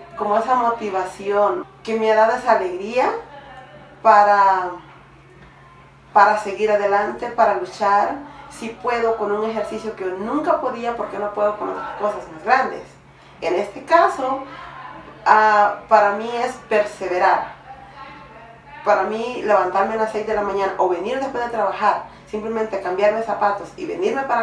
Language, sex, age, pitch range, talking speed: Spanish, female, 30-49, 200-240 Hz, 145 wpm